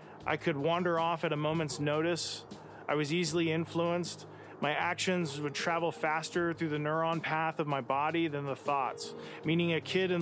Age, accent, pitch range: 30-49, American, 150-170 Hz